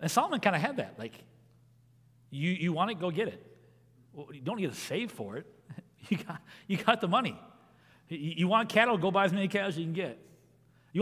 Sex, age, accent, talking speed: male, 40-59, American, 230 wpm